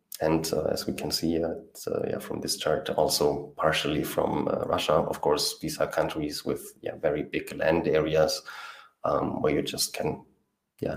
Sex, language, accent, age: male, English, German, 30-49